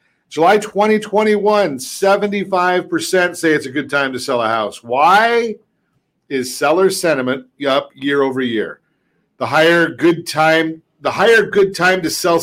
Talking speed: 140 wpm